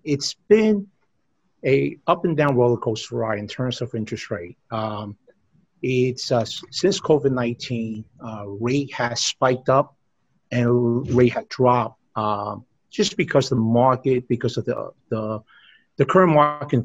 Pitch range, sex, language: 120-140 Hz, male, English